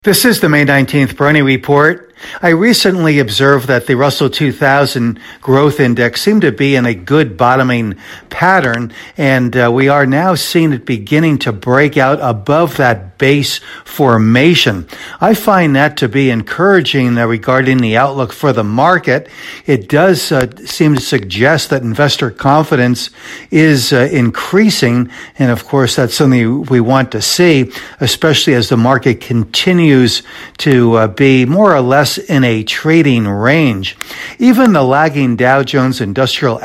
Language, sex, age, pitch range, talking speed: English, male, 60-79, 115-145 Hz, 150 wpm